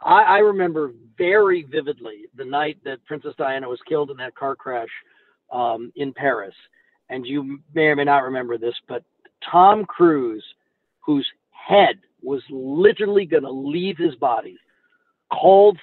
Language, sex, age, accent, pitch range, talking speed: English, male, 50-69, American, 145-230 Hz, 150 wpm